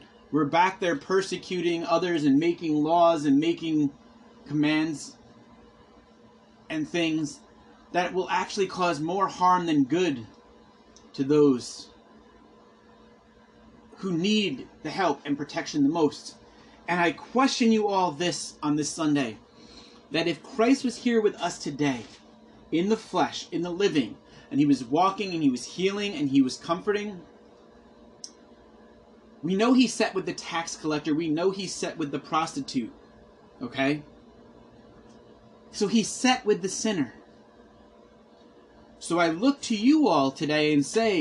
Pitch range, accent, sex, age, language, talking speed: 155-240 Hz, American, male, 30-49, English, 140 wpm